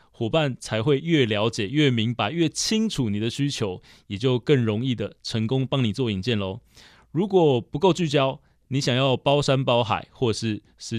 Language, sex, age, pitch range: Chinese, male, 20-39, 110-145 Hz